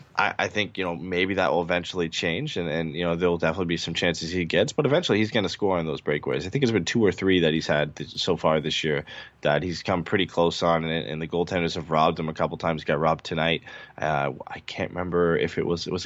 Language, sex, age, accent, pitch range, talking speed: English, male, 20-39, American, 80-95 Hz, 275 wpm